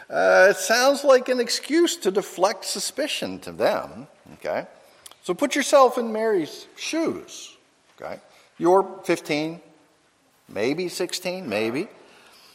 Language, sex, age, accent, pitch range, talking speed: English, male, 50-69, American, 145-230 Hz, 115 wpm